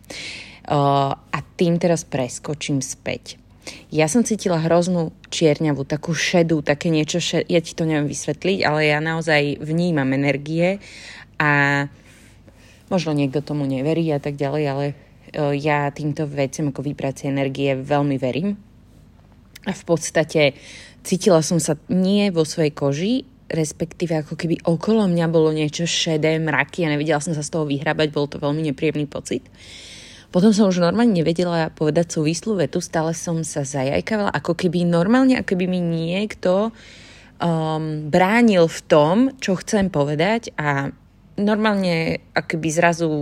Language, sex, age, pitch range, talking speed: Slovak, female, 20-39, 145-175 Hz, 150 wpm